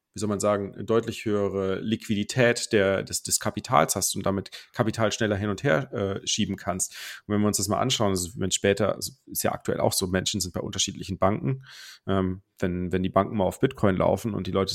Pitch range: 95-115 Hz